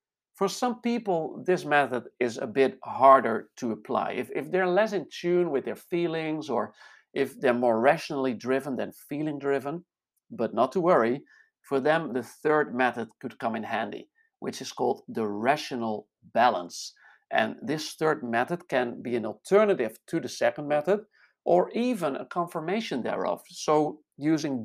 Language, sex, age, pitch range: English, male, 50-69, 115-170 Hz